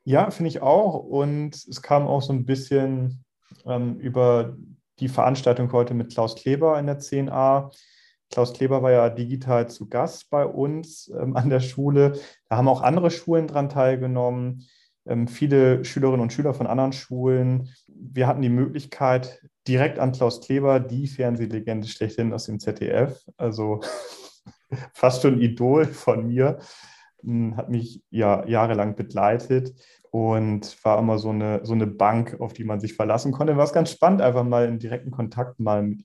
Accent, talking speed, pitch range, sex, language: German, 170 wpm, 115-140 Hz, male, German